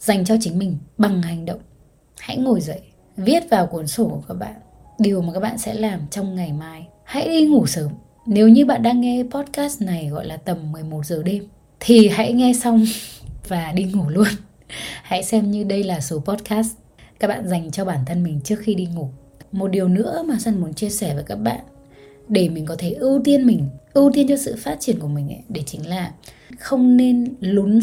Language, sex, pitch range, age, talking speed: Vietnamese, female, 160-230 Hz, 20-39, 220 wpm